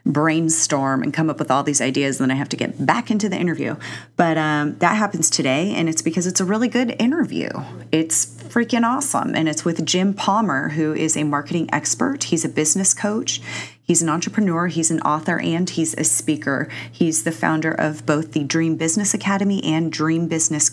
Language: English